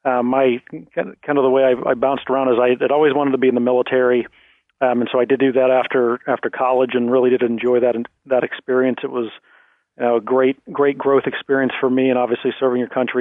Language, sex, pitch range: English, male, 120-135 Hz